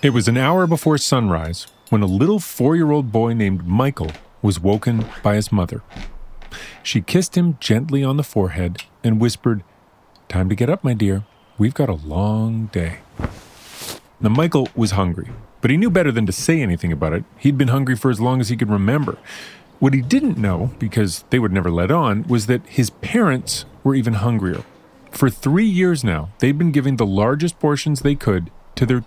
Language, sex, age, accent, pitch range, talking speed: English, male, 30-49, American, 100-140 Hz, 190 wpm